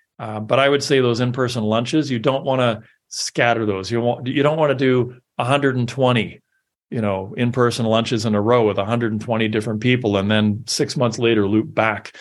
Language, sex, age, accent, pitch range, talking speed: English, male, 40-59, American, 110-130 Hz, 195 wpm